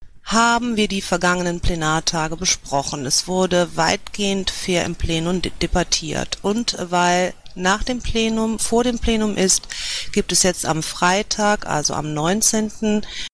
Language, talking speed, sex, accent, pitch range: German, 135 wpm, female, German, 160-210 Hz